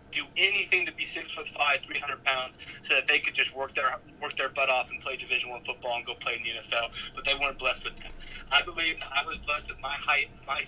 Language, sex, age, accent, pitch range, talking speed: English, male, 20-39, American, 125-145 Hz, 260 wpm